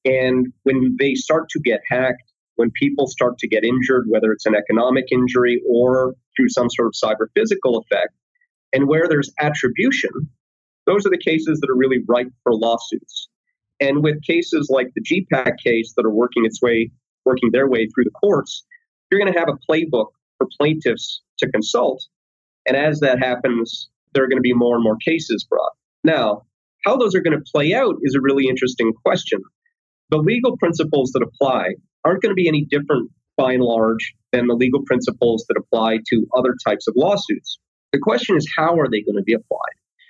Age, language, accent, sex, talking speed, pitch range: 30-49, English, American, male, 190 wpm, 120-155 Hz